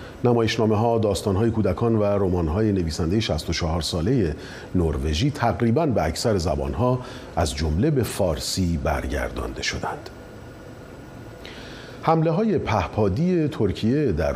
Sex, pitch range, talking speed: male, 80-125 Hz, 115 wpm